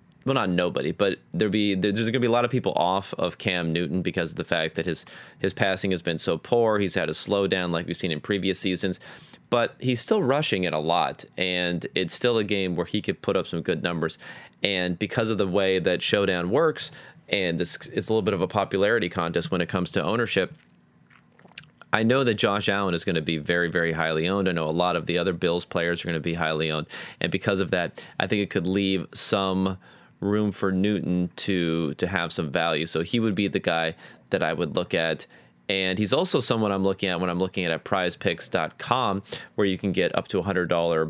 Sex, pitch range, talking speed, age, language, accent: male, 85-100 Hz, 235 wpm, 30-49, English, American